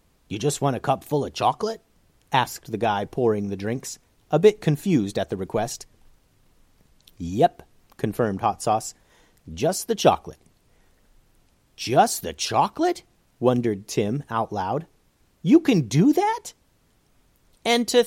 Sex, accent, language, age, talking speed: male, American, English, 40-59, 135 wpm